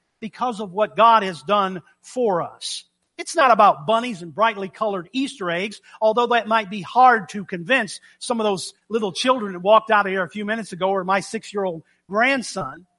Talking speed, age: 195 wpm, 50-69